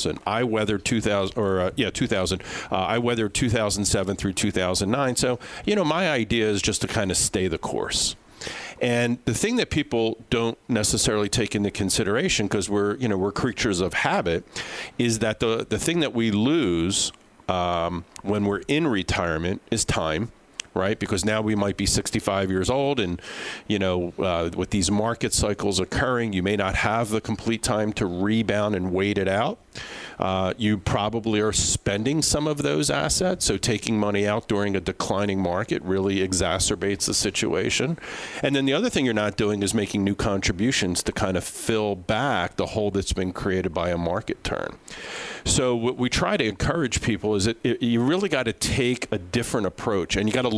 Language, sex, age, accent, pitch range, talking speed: English, male, 50-69, American, 95-115 Hz, 185 wpm